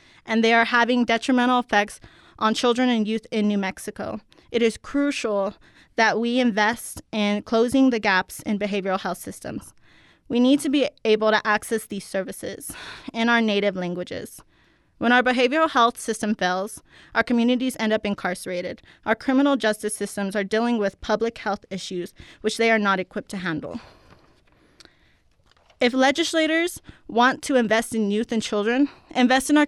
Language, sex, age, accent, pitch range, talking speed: English, female, 20-39, American, 210-245 Hz, 160 wpm